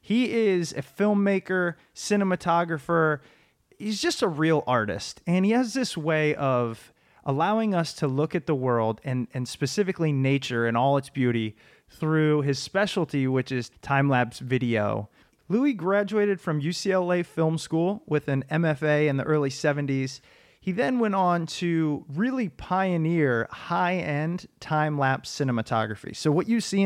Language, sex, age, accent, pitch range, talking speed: English, male, 30-49, American, 135-175 Hz, 145 wpm